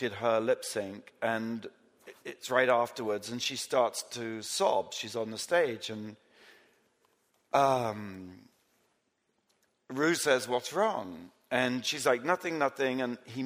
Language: English